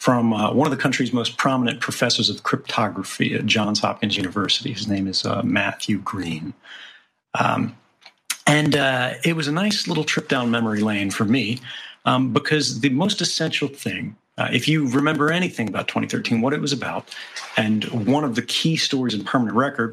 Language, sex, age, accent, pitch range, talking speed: English, male, 40-59, American, 110-140 Hz, 185 wpm